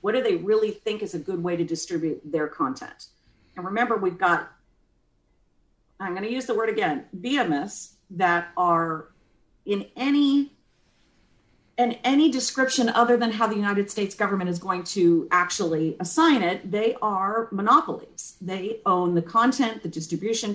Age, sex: 40-59, female